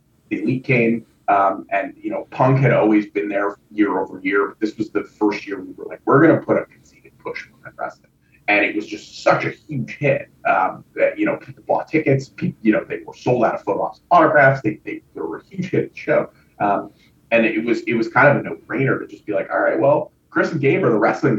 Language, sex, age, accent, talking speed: English, male, 30-49, American, 255 wpm